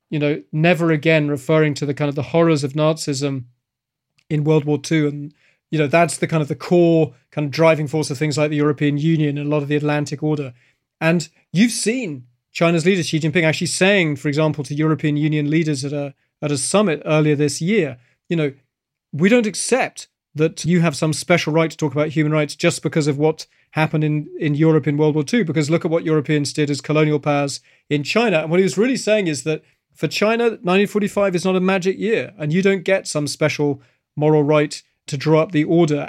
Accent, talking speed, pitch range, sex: British, 225 wpm, 145-170 Hz, male